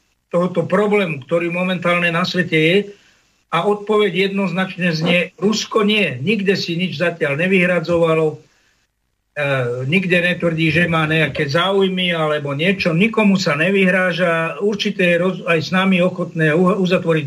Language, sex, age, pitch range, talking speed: Slovak, male, 50-69, 165-195 Hz, 130 wpm